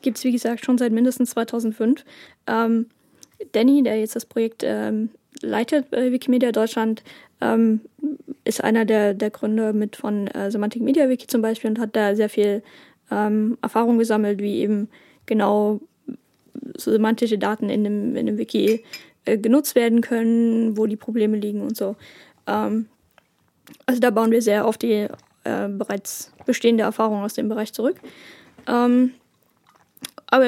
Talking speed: 155 wpm